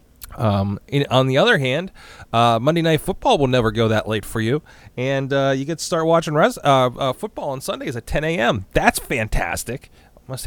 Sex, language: male, English